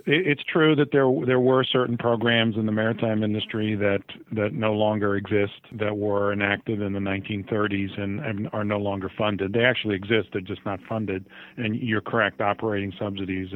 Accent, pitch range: American, 105-120 Hz